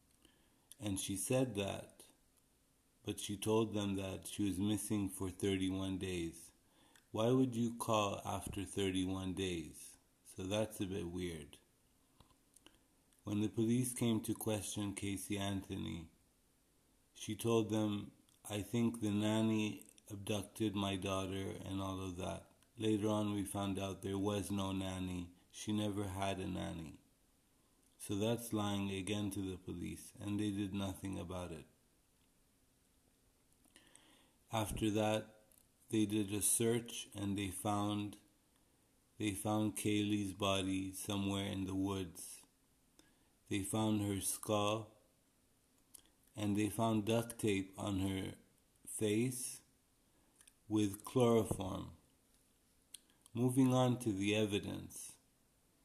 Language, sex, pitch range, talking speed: English, male, 95-110 Hz, 120 wpm